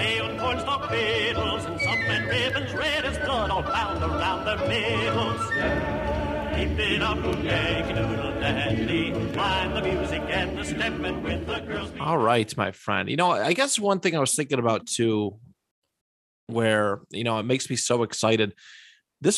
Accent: American